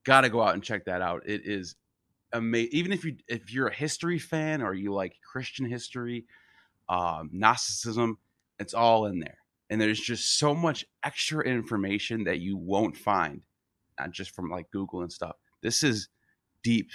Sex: male